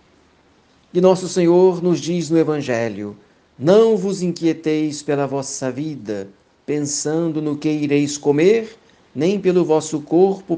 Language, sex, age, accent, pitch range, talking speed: Portuguese, male, 60-79, Brazilian, 135-175 Hz, 125 wpm